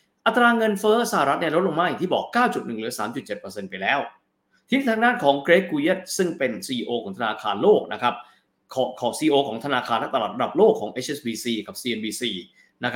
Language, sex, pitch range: Thai, male, 120-190 Hz